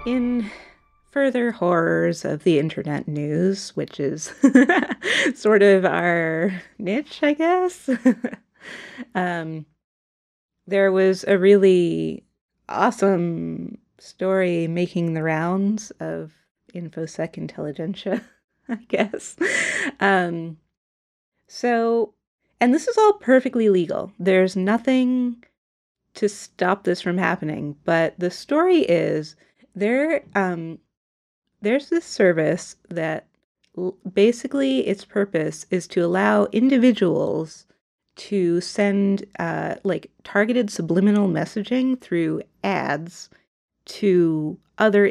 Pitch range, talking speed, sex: 170-235 Hz, 95 wpm, female